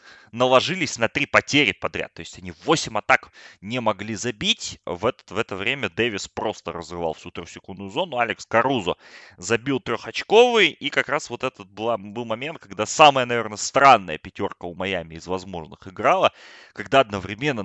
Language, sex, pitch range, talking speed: Russian, male, 95-120 Hz, 165 wpm